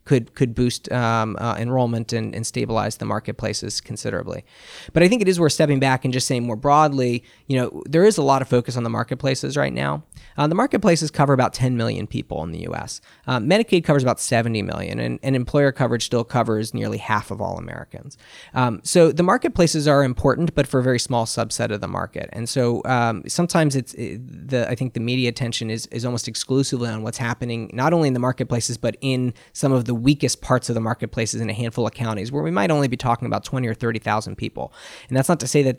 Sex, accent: male, American